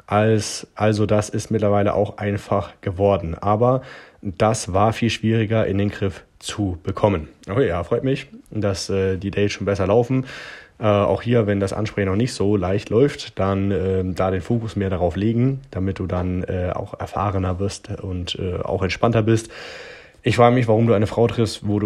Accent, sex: German, male